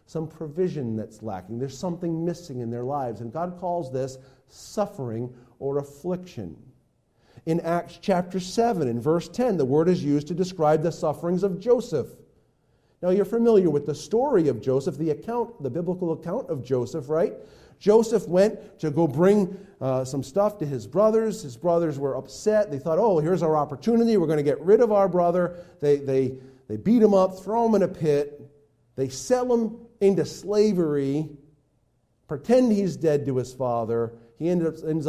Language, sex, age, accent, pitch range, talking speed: English, male, 40-59, American, 130-185 Hz, 180 wpm